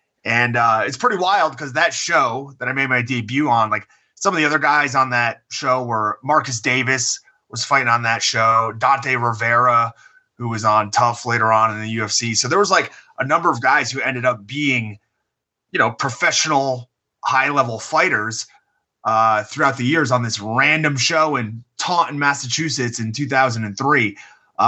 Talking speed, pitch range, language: 175 wpm, 115-140 Hz, English